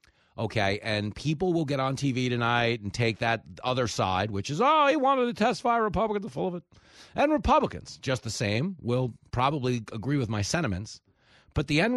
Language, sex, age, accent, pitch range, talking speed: English, male, 30-49, American, 100-135 Hz, 195 wpm